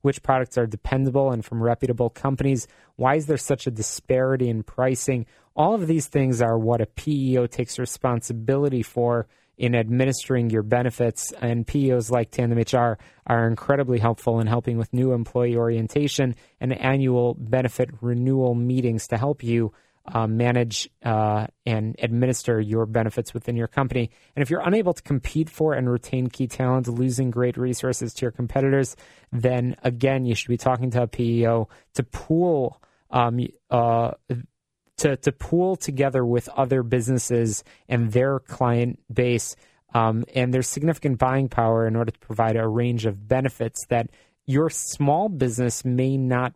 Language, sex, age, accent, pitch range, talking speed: English, male, 30-49, American, 115-135 Hz, 160 wpm